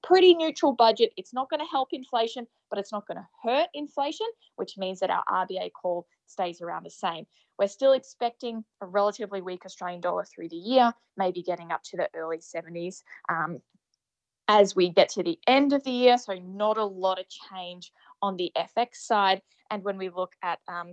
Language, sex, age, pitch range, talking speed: English, female, 20-39, 185-240 Hz, 200 wpm